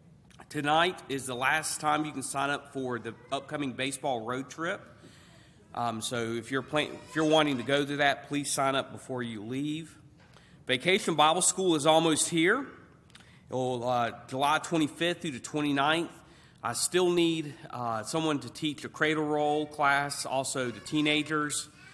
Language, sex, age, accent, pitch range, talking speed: English, male, 40-59, American, 120-150 Hz, 165 wpm